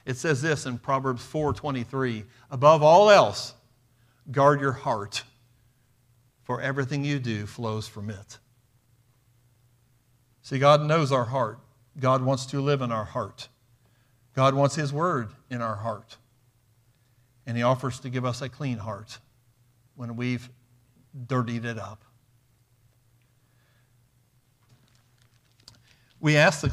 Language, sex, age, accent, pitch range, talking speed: English, male, 50-69, American, 120-175 Hz, 125 wpm